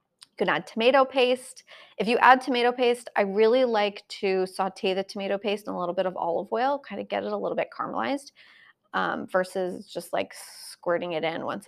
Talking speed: 200 wpm